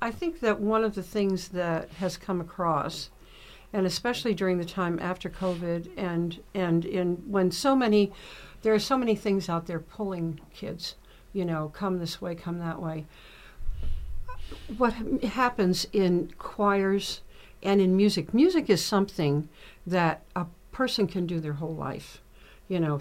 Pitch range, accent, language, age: 165-205 Hz, American, English, 60-79